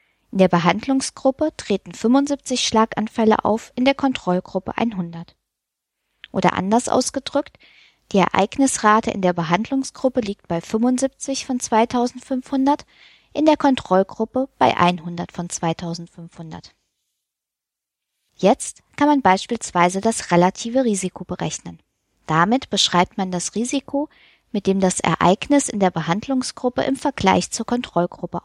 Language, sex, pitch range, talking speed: German, female, 180-250 Hz, 115 wpm